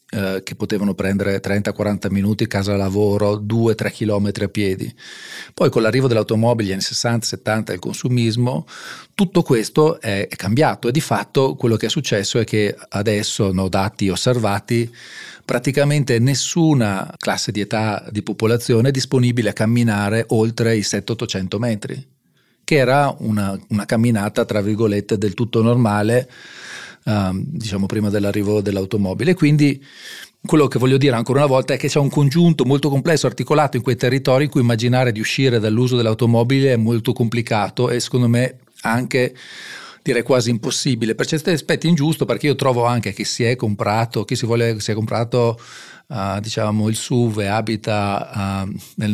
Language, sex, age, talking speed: Italian, male, 40-59, 160 wpm